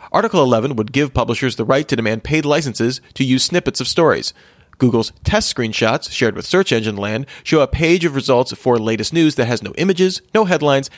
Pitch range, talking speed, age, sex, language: 110-150 Hz, 210 wpm, 30-49, male, English